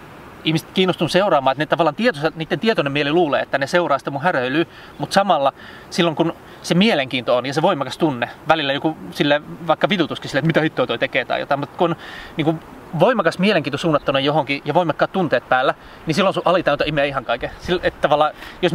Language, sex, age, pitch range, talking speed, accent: Finnish, male, 30-49, 140-175 Hz, 200 wpm, native